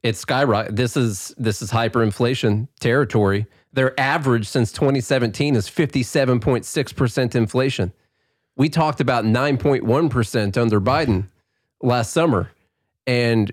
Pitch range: 105-140 Hz